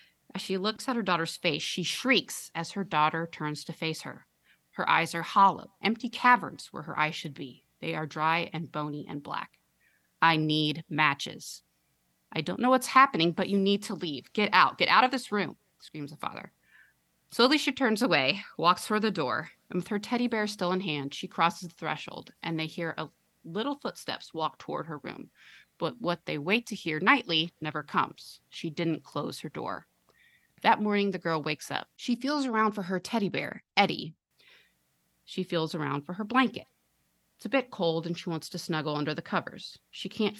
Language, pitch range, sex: English, 160-210 Hz, female